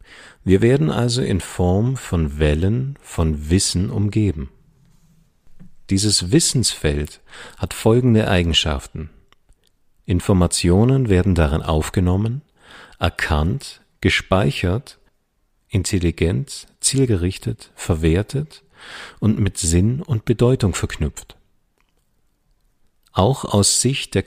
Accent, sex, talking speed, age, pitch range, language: German, male, 85 wpm, 50-69, 80-110 Hz, English